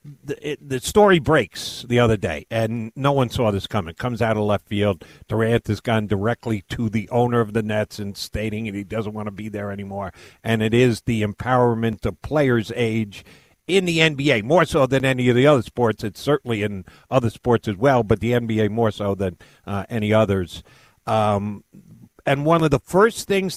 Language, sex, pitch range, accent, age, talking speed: English, male, 110-160 Hz, American, 50-69, 200 wpm